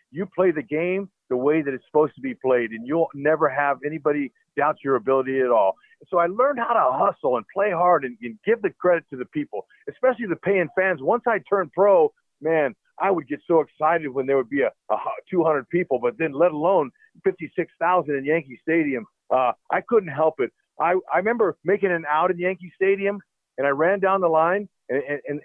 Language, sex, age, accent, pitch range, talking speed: English, male, 50-69, American, 145-195 Hz, 215 wpm